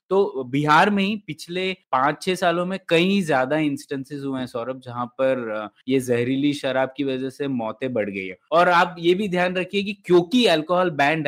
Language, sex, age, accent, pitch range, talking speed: Hindi, male, 20-39, native, 135-180 Hz, 190 wpm